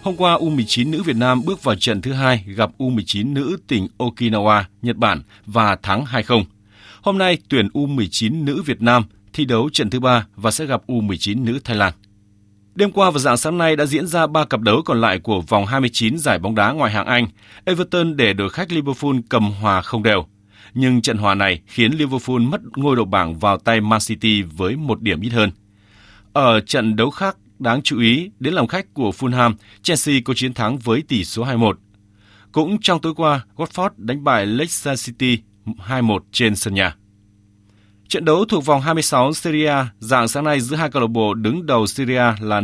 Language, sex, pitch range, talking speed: Vietnamese, male, 105-140 Hz, 205 wpm